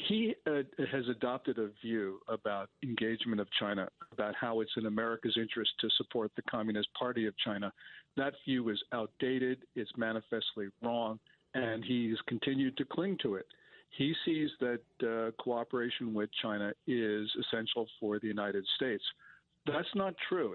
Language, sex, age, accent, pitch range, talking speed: English, male, 50-69, American, 110-135 Hz, 155 wpm